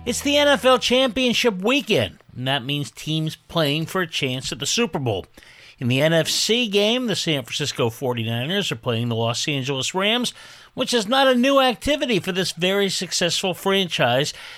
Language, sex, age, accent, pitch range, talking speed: English, male, 50-69, American, 145-210 Hz, 175 wpm